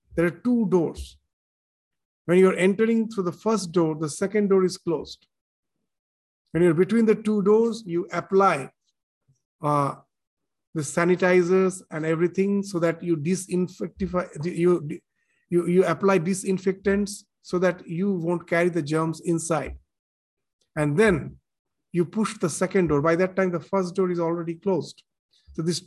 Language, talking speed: English, 155 wpm